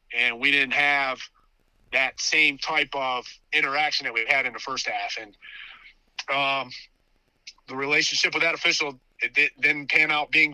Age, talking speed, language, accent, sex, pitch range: 30-49, 160 wpm, English, American, male, 135-160 Hz